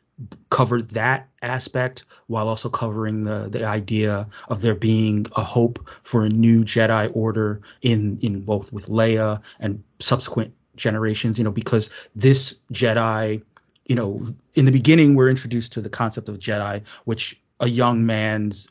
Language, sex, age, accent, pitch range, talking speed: English, male, 30-49, American, 105-125 Hz, 155 wpm